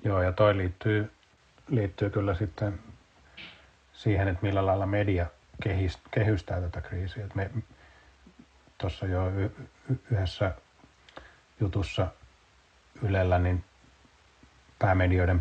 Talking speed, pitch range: 95 wpm, 85-100 Hz